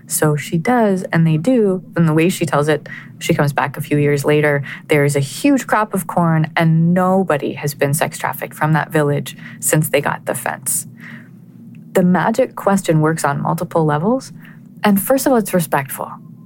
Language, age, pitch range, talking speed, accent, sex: English, 20-39, 155-195 Hz, 195 wpm, American, female